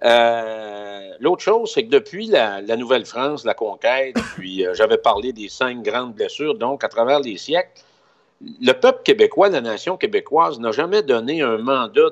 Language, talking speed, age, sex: French, 175 wpm, 50-69, male